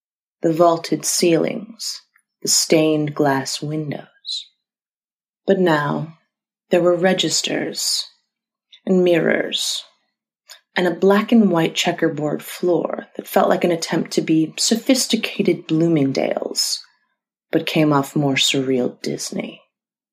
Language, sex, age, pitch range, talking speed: English, female, 30-49, 150-185 Hz, 100 wpm